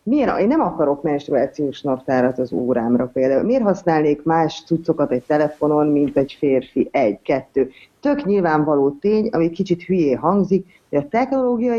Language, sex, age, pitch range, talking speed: English, female, 30-49, 145-190 Hz, 150 wpm